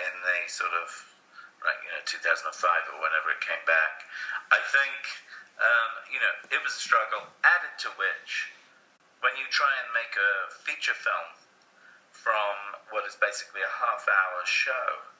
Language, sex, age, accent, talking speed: English, male, 40-59, British, 160 wpm